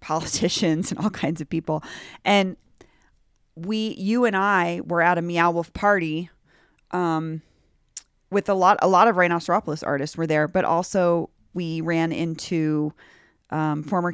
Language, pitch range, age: English, 160-195 Hz, 30-49